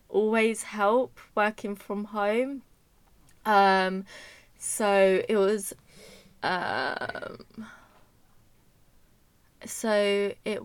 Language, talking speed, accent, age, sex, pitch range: English, 70 wpm, British, 20-39, female, 185-215 Hz